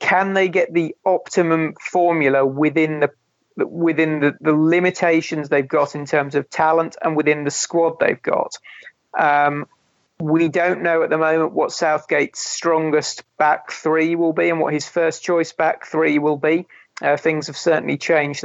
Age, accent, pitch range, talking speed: 40-59, British, 150-165 Hz, 170 wpm